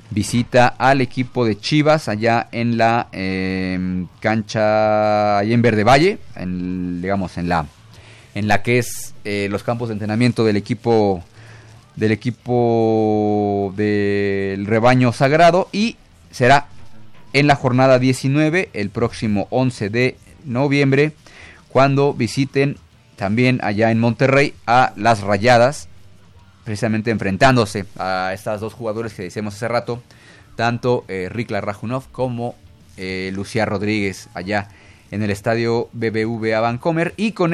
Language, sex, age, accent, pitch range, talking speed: Spanish, male, 30-49, Mexican, 100-125 Hz, 120 wpm